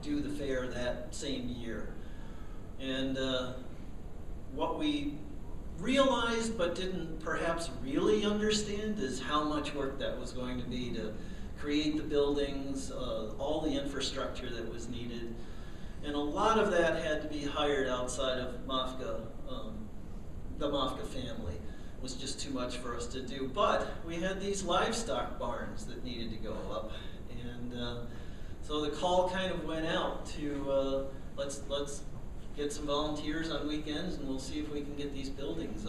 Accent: American